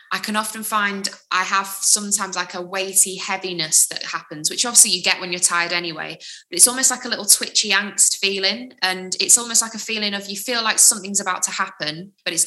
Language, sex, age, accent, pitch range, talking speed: English, female, 20-39, British, 170-195 Hz, 220 wpm